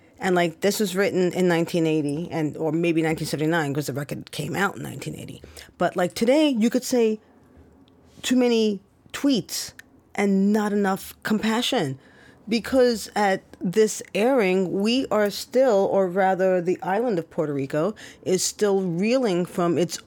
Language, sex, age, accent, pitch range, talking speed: English, female, 40-59, American, 160-205 Hz, 150 wpm